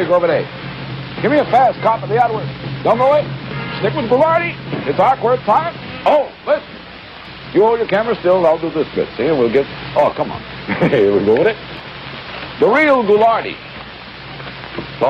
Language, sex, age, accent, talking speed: English, male, 60-79, American, 185 wpm